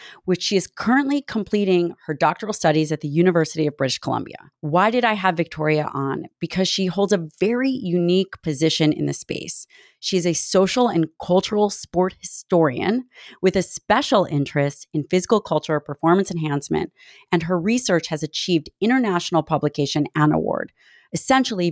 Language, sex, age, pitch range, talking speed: English, female, 30-49, 155-195 Hz, 155 wpm